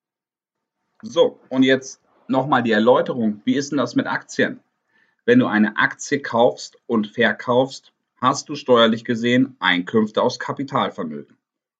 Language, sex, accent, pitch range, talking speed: German, male, German, 115-150 Hz, 130 wpm